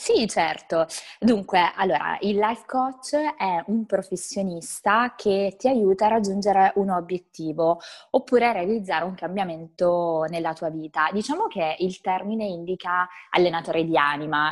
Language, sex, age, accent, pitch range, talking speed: Italian, female, 20-39, native, 170-215 Hz, 135 wpm